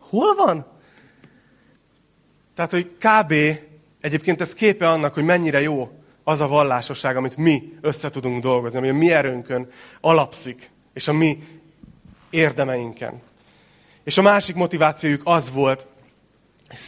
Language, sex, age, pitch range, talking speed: Hungarian, male, 30-49, 125-165 Hz, 130 wpm